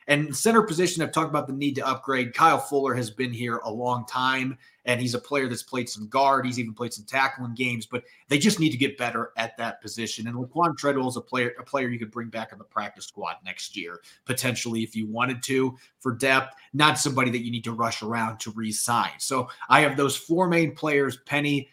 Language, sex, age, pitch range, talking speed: English, male, 30-49, 120-145 Hz, 235 wpm